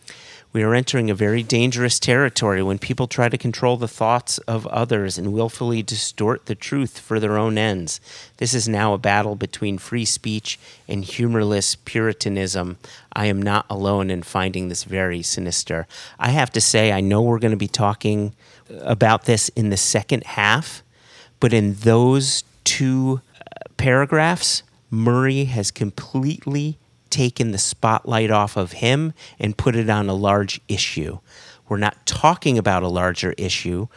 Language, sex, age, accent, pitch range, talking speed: English, male, 30-49, American, 100-125 Hz, 160 wpm